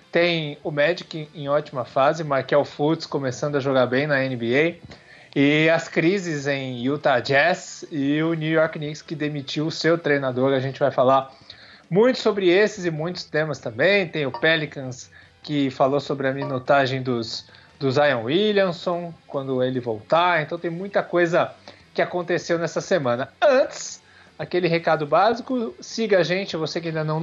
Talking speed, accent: 165 wpm, Brazilian